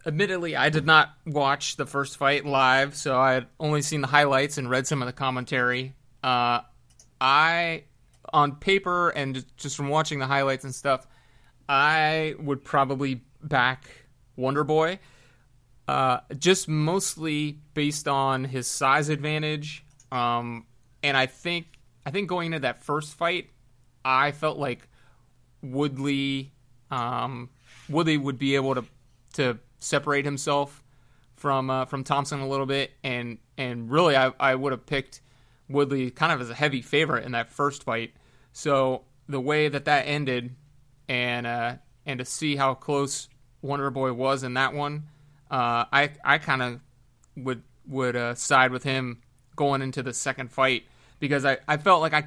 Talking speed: 155 wpm